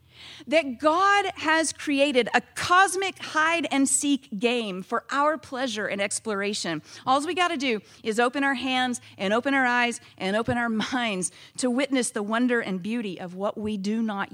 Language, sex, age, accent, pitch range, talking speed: English, female, 40-59, American, 160-260 Hz, 170 wpm